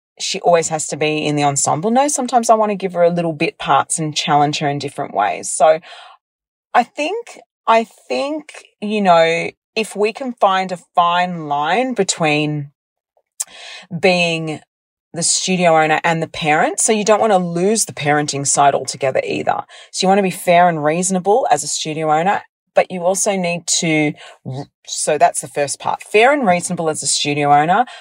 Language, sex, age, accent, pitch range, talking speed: English, female, 30-49, Australian, 150-195 Hz, 185 wpm